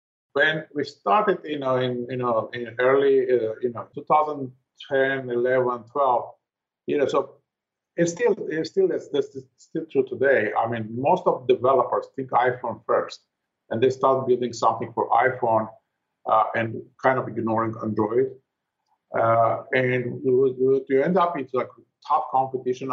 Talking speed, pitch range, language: 160 wpm, 120-160 Hz, English